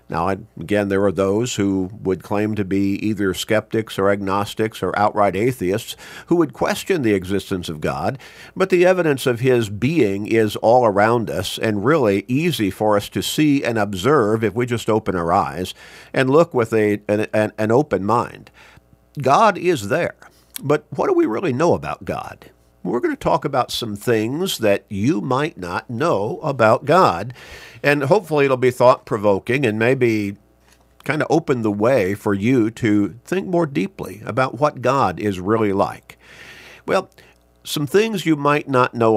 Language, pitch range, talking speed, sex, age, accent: English, 100-140 Hz, 175 wpm, male, 50-69, American